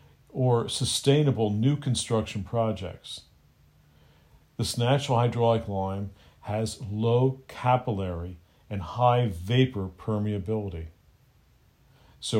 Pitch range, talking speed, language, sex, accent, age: 100-130 Hz, 80 wpm, English, male, American, 50-69